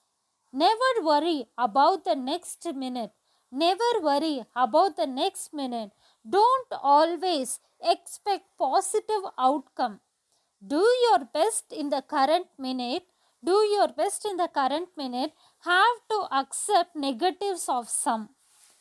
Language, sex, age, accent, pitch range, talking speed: Hindi, female, 20-39, native, 265-370 Hz, 120 wpm